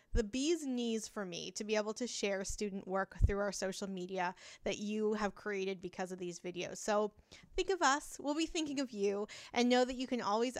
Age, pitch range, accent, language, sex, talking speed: 20-39, 200-255 Hz, American, English, female, 220 wpm